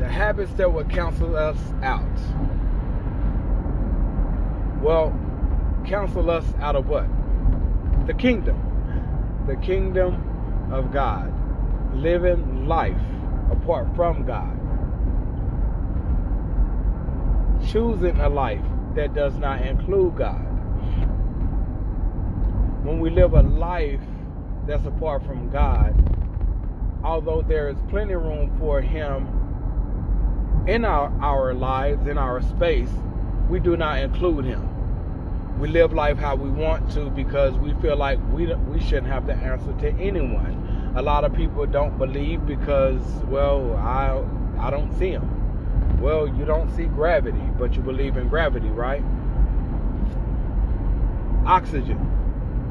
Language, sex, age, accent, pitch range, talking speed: English, male, 30-49, American, 85-135 Hz, 120 wpm